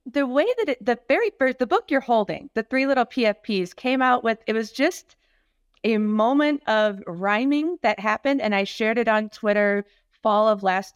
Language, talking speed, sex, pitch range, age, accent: English, 190 wpm, female, 190-240 Hz, 30-49, American